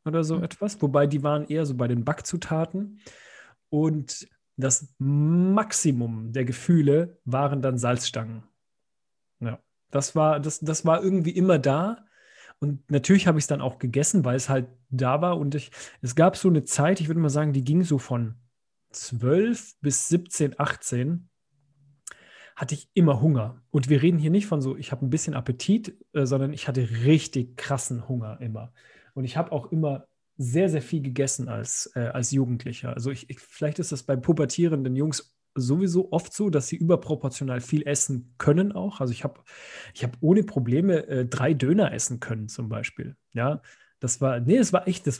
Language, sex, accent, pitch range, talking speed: German, male, German, 130-160 Hz, 185 wpm